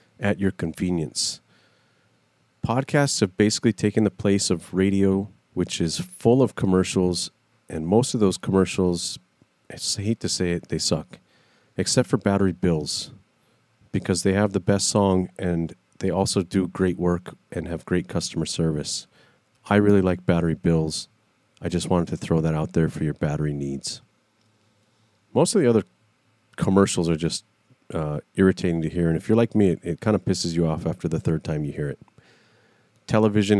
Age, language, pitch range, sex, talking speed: 40-59, English, 85-105 Hz, male, 170 wpm